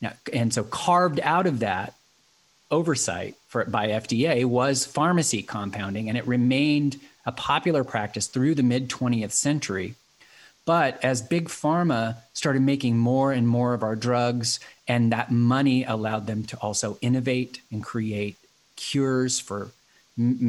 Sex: male